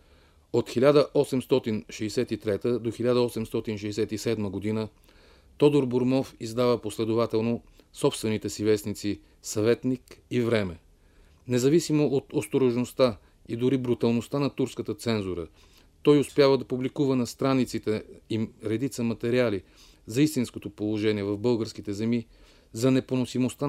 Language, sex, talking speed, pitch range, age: Bulgarian, male, 105 wpm, 105-125 Hz, 40-59